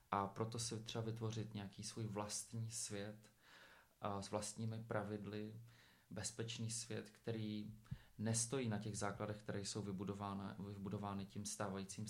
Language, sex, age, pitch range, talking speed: Czech, male, 30-49, 100-110 Hz, 125 wpm